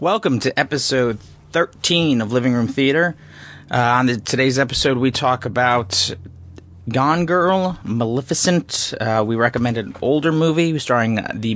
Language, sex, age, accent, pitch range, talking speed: English, male, 30-49, American, 105-130 Hz, 140 wpm